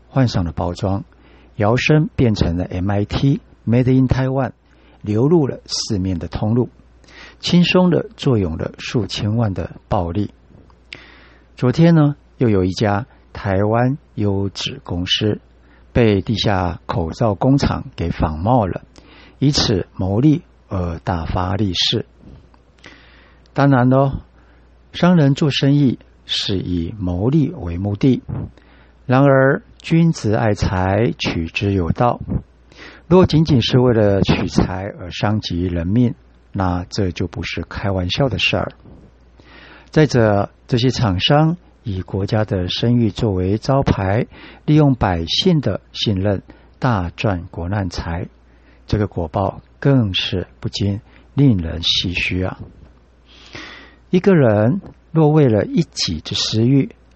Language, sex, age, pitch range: English, male, 60-79, 90-130 Hz